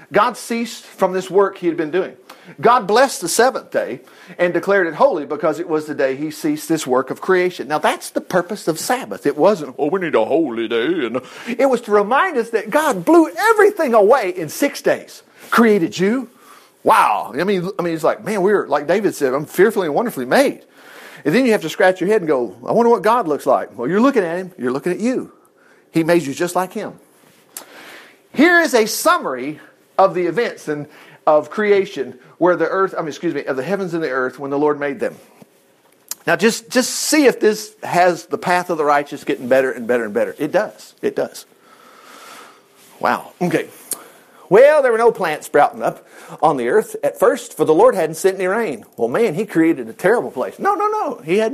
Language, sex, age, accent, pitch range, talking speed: English, male, 50-69, American, 170-255 Hz, 220 wpm